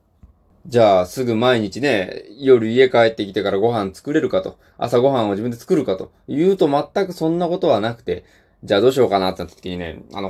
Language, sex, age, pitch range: Japanese, male, 20-39, 95-150 Hz